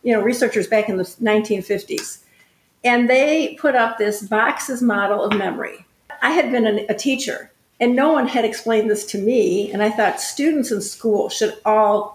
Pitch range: 205-240 Hz